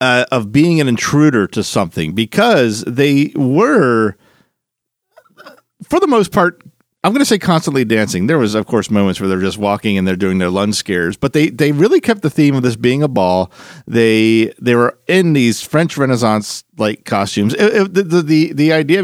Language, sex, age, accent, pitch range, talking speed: English, male, 40-59, American, 110-150 Hz, 190 wpm